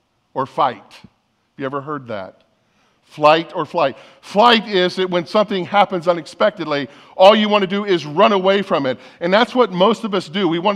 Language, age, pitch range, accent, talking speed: English, 50-69, 170-230 Hz, American, 195 wpm